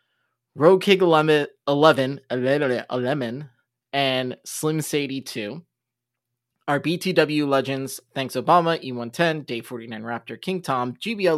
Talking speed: 105 wpm